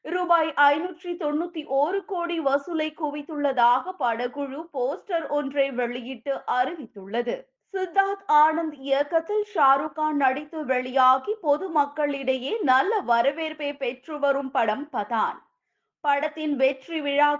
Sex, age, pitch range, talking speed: female, 20-39, 260-320 Hz, 100 wpm